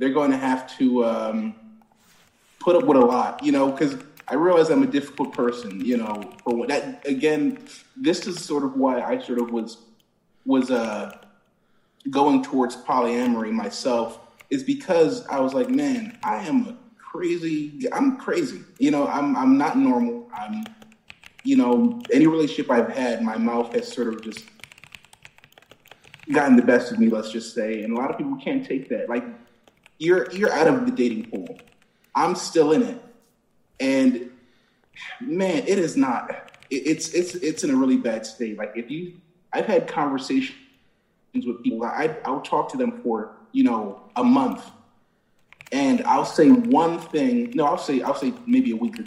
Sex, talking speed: male, 180 wpm